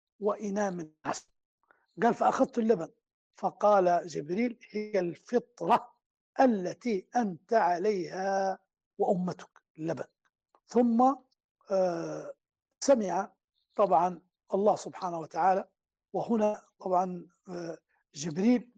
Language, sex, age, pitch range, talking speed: Arabic, male, 60-79, 175-215 Hz, 75 wpm